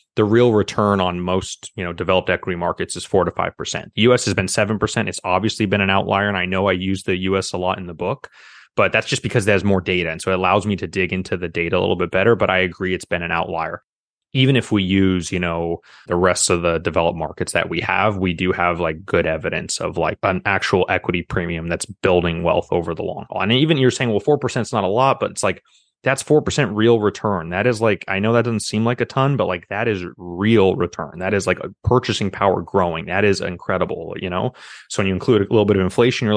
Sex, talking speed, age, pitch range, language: male, 260 wpm, 20-39, 90-110 Hz, English